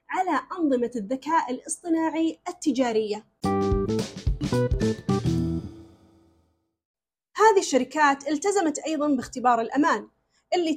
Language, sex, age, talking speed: Arabic, female, 30-49, 65 wpm